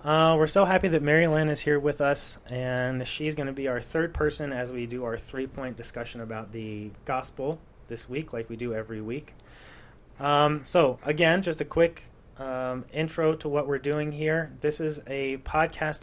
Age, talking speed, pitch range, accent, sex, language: 30-49, 200 wpm, 115-140 Hz, American, male, English